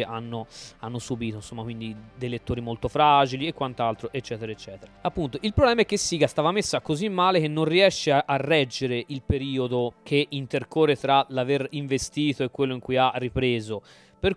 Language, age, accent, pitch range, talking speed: Italian, 20-39, native, 120-150 Hz, 180 wpm